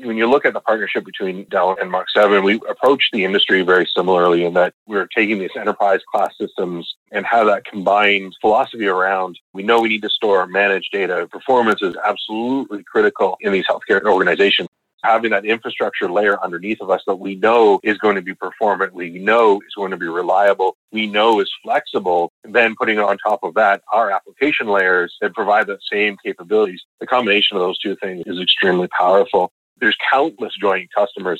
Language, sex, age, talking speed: English, male, 40-59, 195 wpm